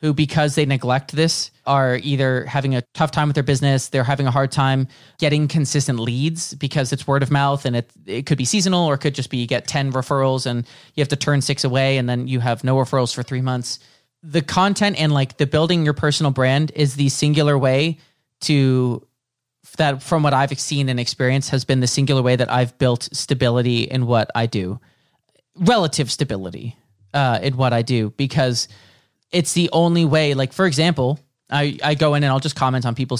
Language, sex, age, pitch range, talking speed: English, male, 30-49, 125-145 Hz, 210 wpm